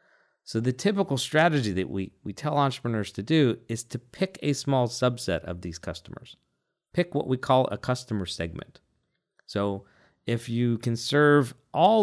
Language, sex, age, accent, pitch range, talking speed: English, male, 40-59, American, 95-130 Hz, 165 wpm